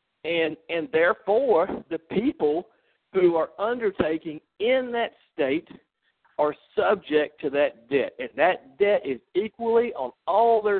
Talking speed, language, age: 135 wpm, English, 50-69